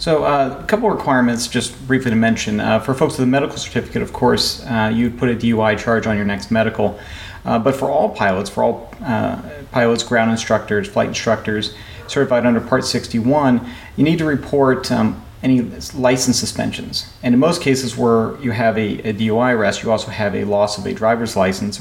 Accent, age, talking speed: American, 40-59, 200 wpm